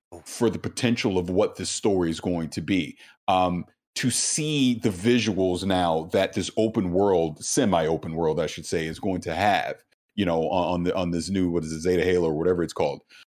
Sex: male